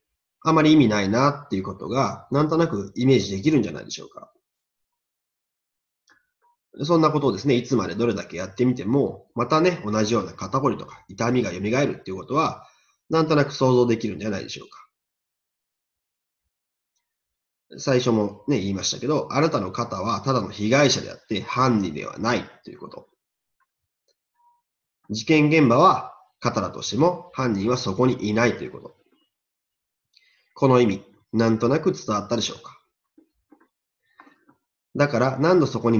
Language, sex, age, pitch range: Japanese, male, 30-49, 105-145 Hz